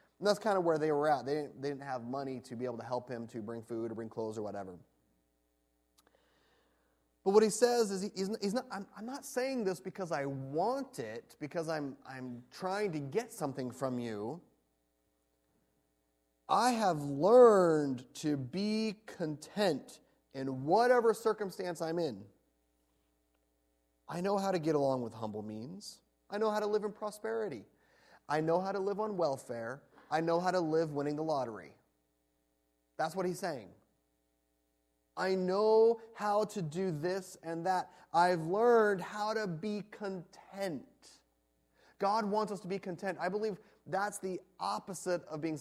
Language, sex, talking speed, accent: English, male, 165 wpm, American